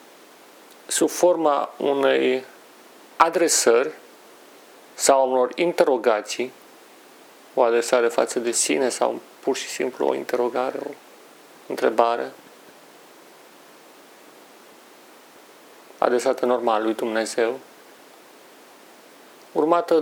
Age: 40-59